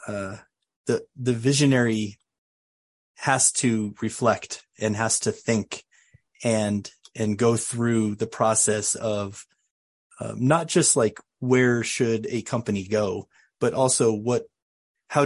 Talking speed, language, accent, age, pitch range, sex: 120 wpm, English, American, 30-49, 105-120 Hz, male